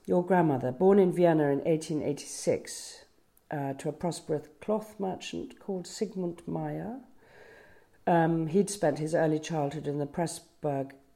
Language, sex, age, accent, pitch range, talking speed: English, female, 40-59, British, 135-175 Hz, 145 wpm